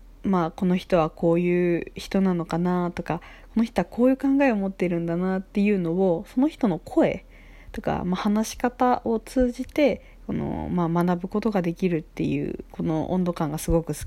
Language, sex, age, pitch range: Japanese, female, 20-39, 170-205 Hz